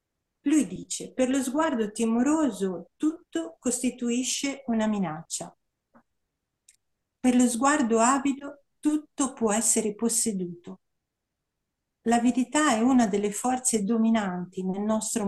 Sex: female